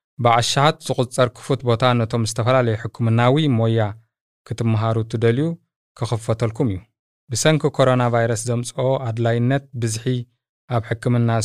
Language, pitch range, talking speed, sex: Amharic, 115-140 Hz, 95 wpm, male